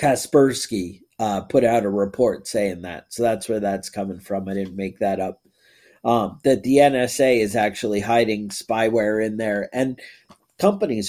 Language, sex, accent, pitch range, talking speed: English, male, American, 110-150 Hz, 170 wpm